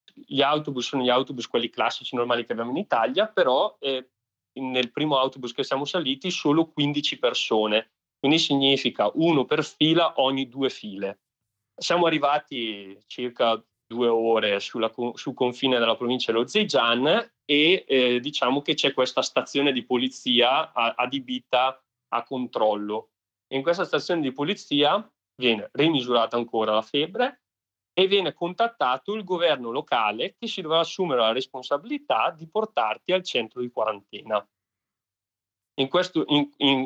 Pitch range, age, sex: 115-150 Hz, 30-49, male